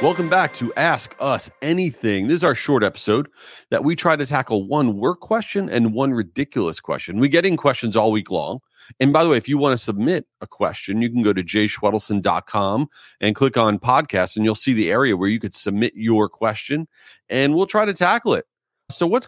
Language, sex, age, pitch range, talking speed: English, male, 30-49, 110-170 Hz, 215 wpm